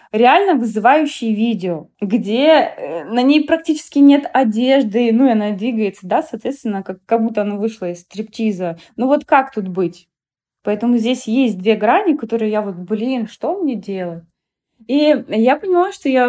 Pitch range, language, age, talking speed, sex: 200-255 Hz, Russian, 20-39, 160 wpm, female